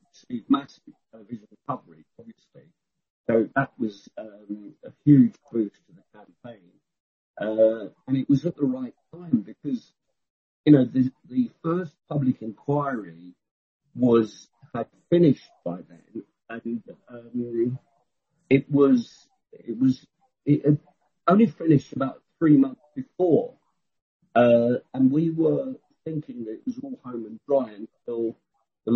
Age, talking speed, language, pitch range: 50-69, 130 wpm, English, 120-155 Hz